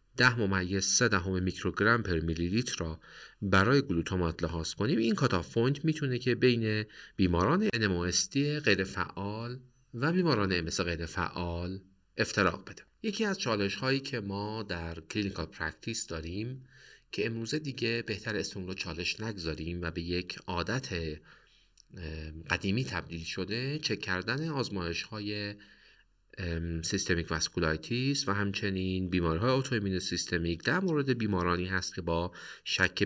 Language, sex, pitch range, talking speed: Persian, male, 85-120 Hz, 130 wpm